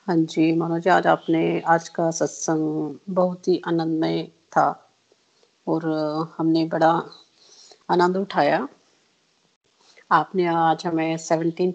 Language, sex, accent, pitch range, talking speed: Hindi, female, native, 165-195 Hz, 105 wpm